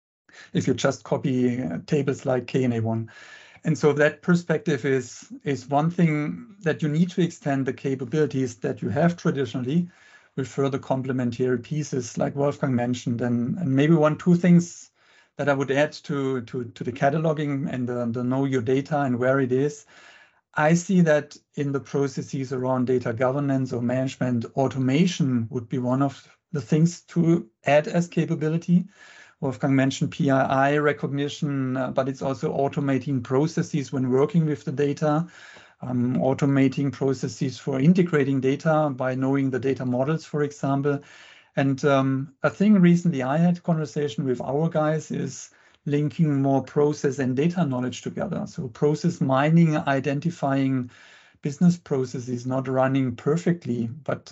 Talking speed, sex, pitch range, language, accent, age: 155 wpm, male, 130-155 Hz, English, German, 50-69